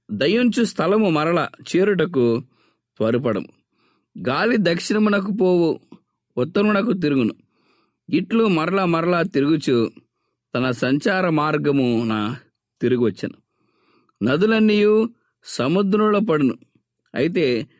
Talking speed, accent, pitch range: 80 wpm, Indian, 130-205 Hz